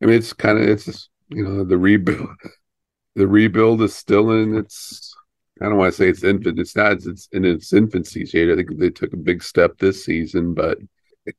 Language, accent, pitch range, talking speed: English, American, 95-105 Hz, 220 wpm